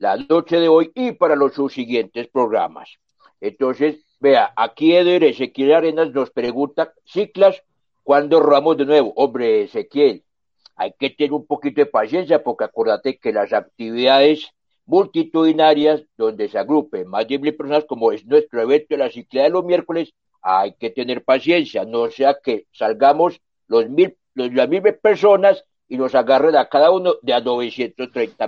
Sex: male